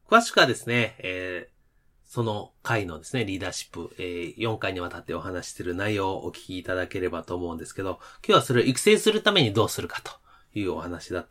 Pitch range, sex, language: 90-150 Hz, male, Japanese